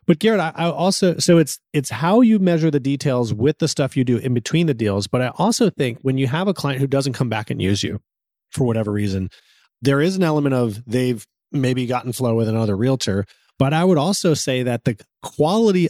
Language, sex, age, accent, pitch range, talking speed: English, male, 30-49, American, 125-165 Hz, 225 wpm